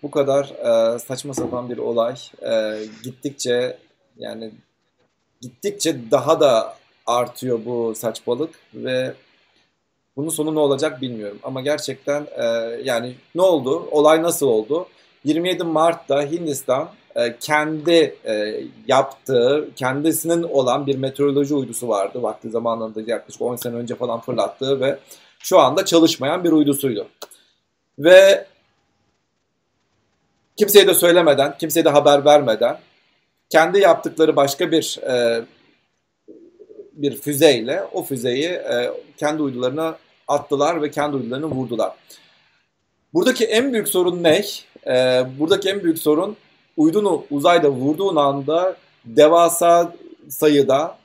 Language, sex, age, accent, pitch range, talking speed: Turkish, male, 40-59, native, 125-170 Hz, 115 wpm